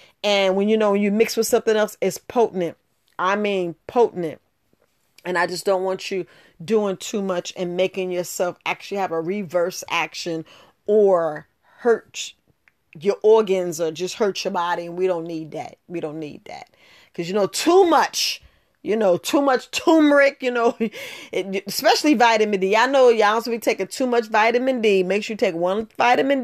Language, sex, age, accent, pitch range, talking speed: English, female, 40-59, American, 185-235 Hz, 185 wpm